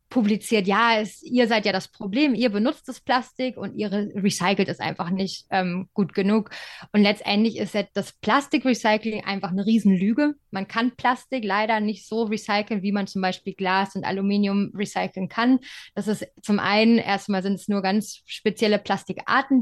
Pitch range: 195-230 Hz